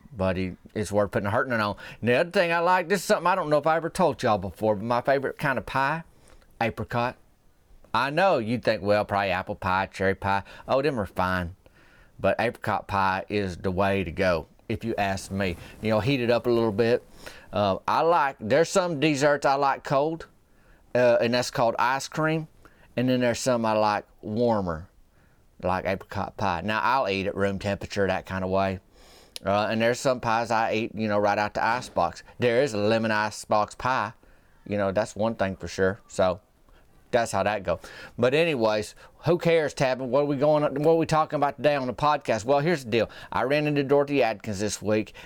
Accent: American